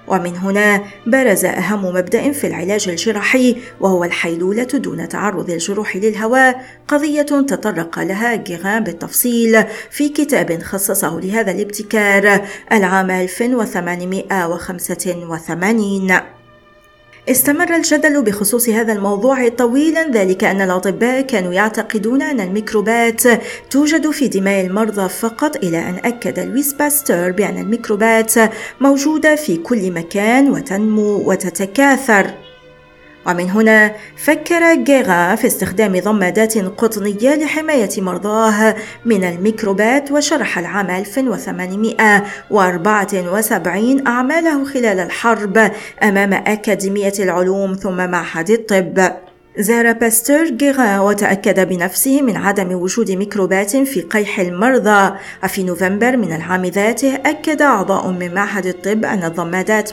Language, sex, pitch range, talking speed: Arabic, female, 190-240 Hz, 105 wpm